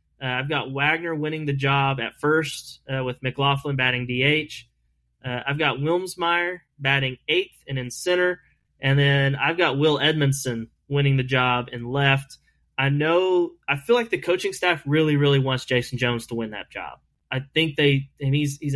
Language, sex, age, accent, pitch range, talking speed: English, male, 20-39, American, 130-155 Hz, 190 wpm